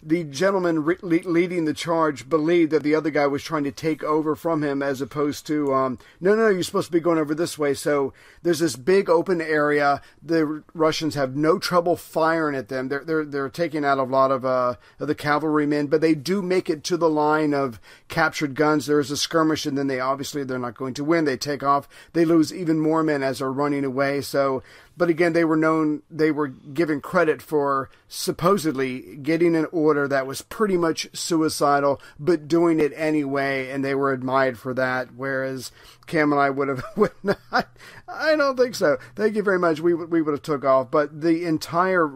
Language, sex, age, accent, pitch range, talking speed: English, male, 40-59, American, 140-165 Hz, 210 wpm